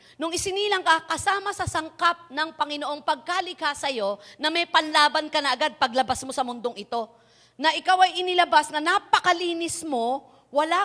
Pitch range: 255-340 Hz